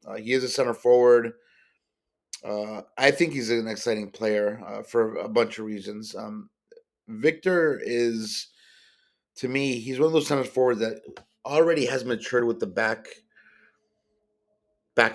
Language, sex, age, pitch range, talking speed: English, male, 30-49, 115-130 Hz, 150 wpm